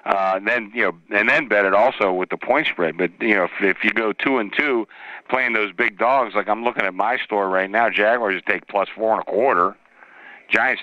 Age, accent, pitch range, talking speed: 50-69, American, 95-110 Hz, 245 wpm